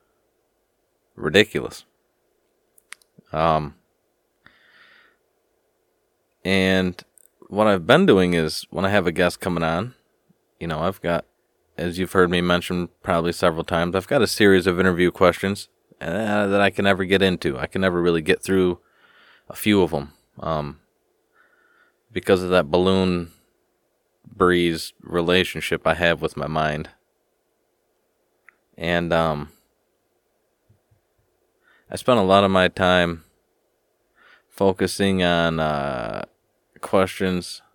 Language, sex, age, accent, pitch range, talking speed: English, male, 30-49, American, 85-100 Hz, 120 wpm